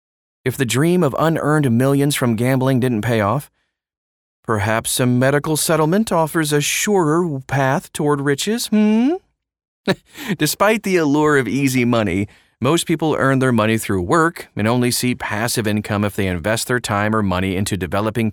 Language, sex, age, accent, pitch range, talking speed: English, male, 30-49, American, 105-150 Hz, 160 wpm